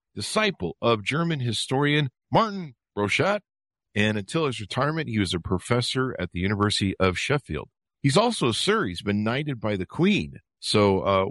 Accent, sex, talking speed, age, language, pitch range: American, male, 165 wpm, 50-69, English, 95-135 Hz